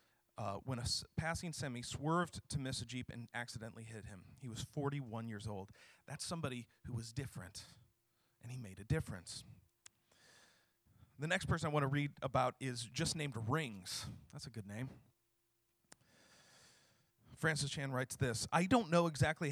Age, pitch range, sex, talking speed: 40-59, 115-155 Hz, male, 165 wpm